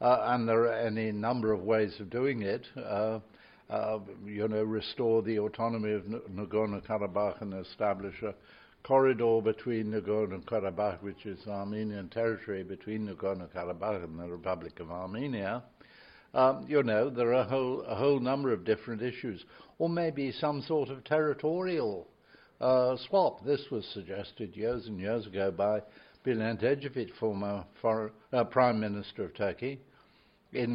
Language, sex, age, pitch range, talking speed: English, male, 60-79, 105-125 Hz, 145 wpm